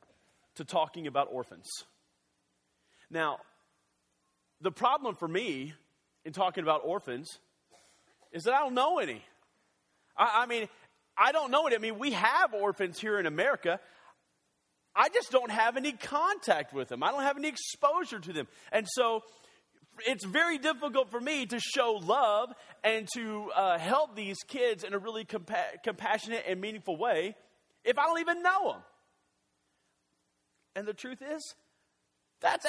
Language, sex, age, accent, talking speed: English, male, 30-49, American, 155 wpm